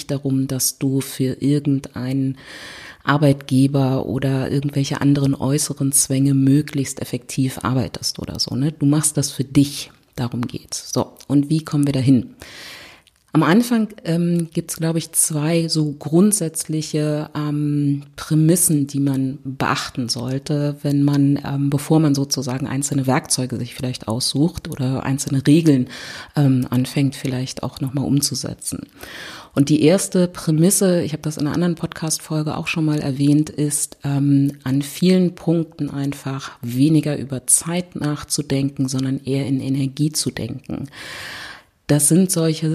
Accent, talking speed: German, 140 wpm